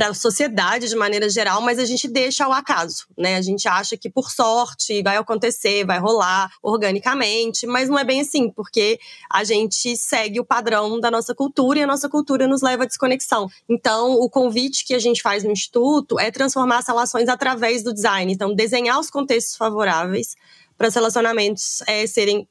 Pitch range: 200-250 Hz